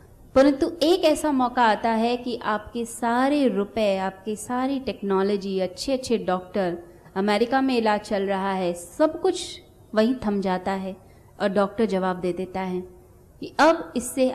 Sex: female